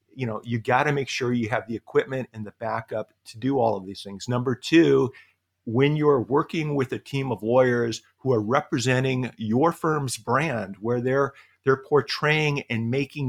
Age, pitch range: 50-69, 110-130 Hz